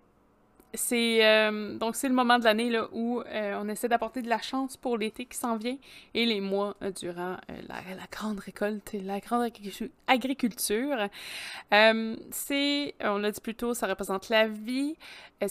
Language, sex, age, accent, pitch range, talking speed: French, female, 20-39, Canadian, 190-230 Hz, 185 wpm